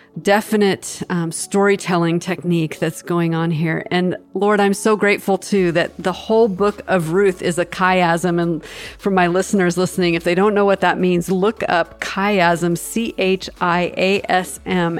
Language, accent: English, American